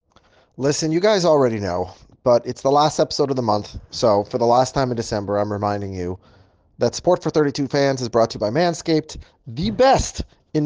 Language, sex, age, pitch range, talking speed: English, male, 20-39, 120-155 Hz, 210 wpm